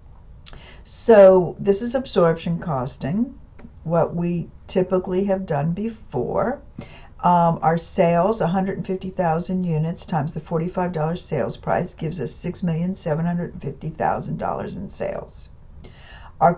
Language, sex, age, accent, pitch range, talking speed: English, female, 60-79, American, 160-190 Hz, 100 wpm